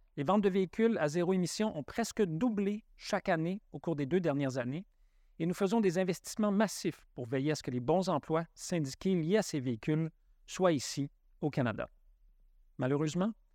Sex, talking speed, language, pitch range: male, 185 wpm, English, 140-185 Hz